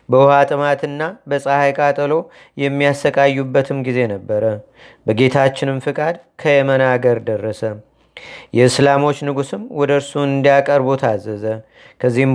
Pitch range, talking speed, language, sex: 130-145 Hz, 75 wpm, Amharic, male